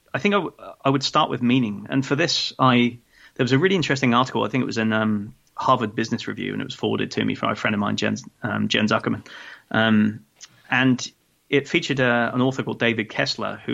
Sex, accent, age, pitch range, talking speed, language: male, British, 20-39, 105-130 Hz, 235 wpm, English